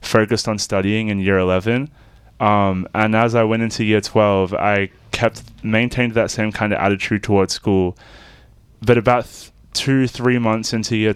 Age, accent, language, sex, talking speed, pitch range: 20-39, American, English, male, 170 wpm, 95-115 Hz